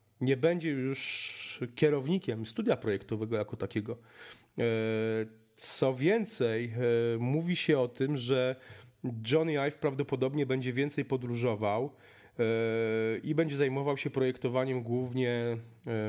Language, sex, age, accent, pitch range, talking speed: Polish, male, 30-49, native, 115-140 Hz, 100 wpm